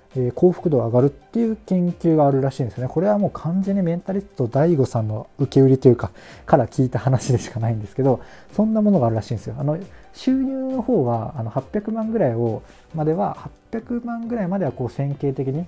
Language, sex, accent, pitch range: Japanese, male, native, 125-180 Hz